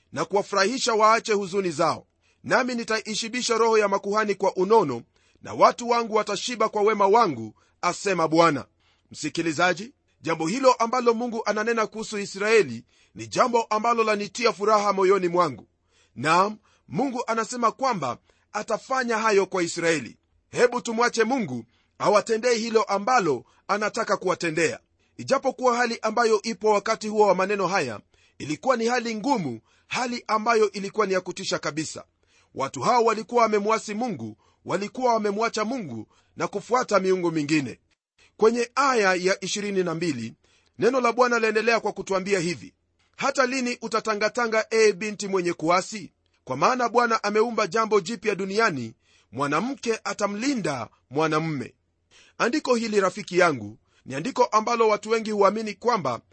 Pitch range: 175-230 Hz